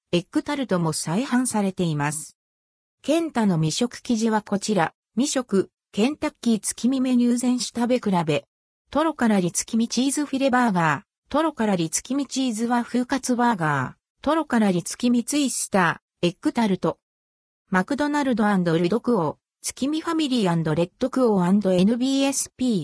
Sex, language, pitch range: female, Japanese, 180-260 Hz